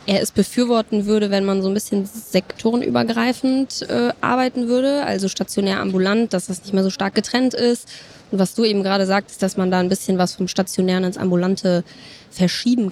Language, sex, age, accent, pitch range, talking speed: German, female, 20-39, German, 185-220 Hz, 190 wpm